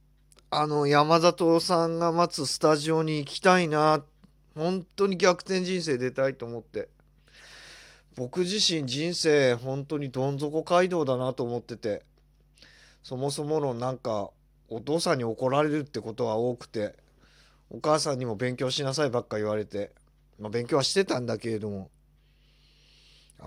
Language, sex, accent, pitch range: Japanese, male, native, 110-150 Hz